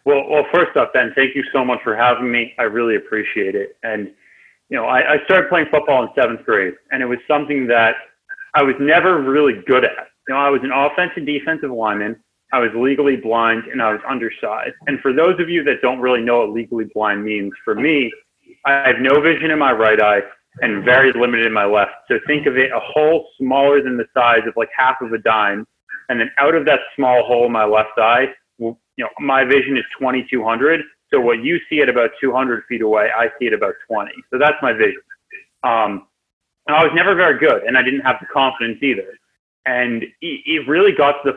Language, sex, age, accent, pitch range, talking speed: English, male, 30-49, American, 120-155 Hz, 225 wpm